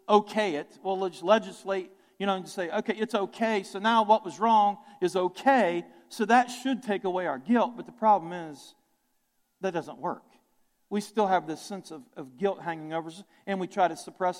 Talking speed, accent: 205 wpm, American